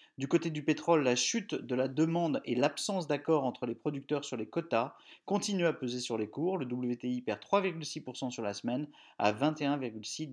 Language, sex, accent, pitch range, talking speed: French, male, French, 125-165 Hz, 190 wpm